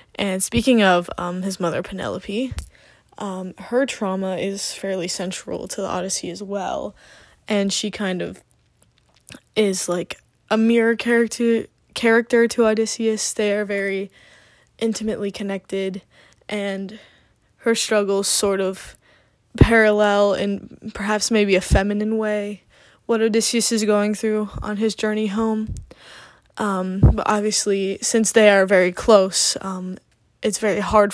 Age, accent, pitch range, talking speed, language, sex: 10-29, American, 195-230 Hz, 130 wpm, English, female